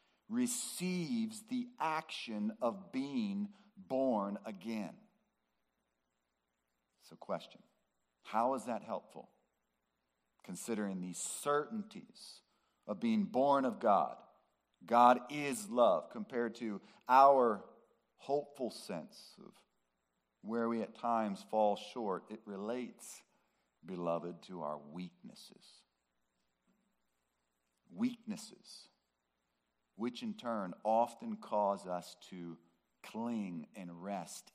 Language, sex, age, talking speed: English, male, 50-69, 90 wpm